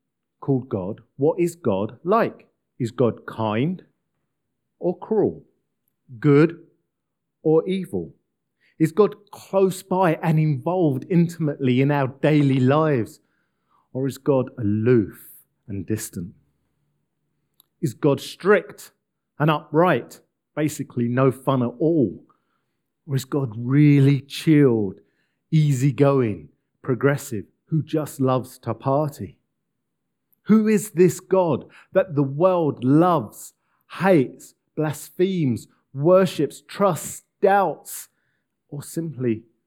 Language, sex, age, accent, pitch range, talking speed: English, male, 40-59, British, 115-160 Hz, 105 wpm